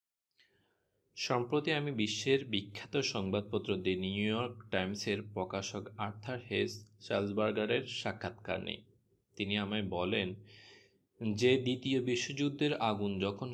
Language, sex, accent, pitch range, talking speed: Bengali, male, native, 100-120 Hz, 100 wpm